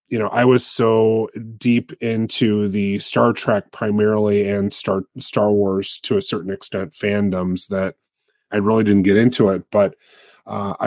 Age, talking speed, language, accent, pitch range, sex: 30-49, 160 wpm, English, American, 100-110 Hz, male